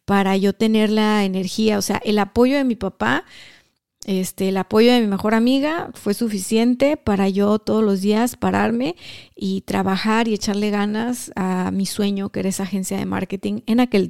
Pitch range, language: 200-230 Hz, Spanish